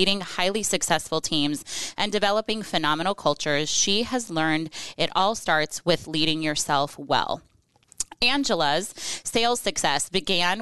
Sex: female